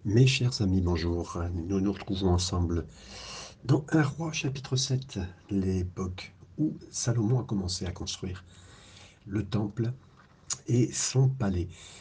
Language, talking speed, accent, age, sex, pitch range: French, 125 wpm, French, 60-79, male, 90-110 Hz